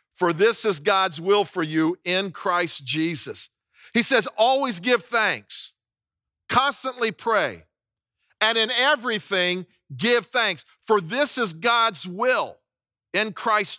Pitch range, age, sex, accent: 180-230 Hz, 50-69, male, American